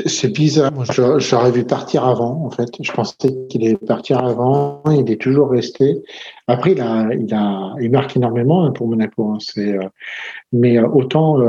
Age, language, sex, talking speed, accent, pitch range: 50-69, French, male, 170 wpm, French, 115-135 Hz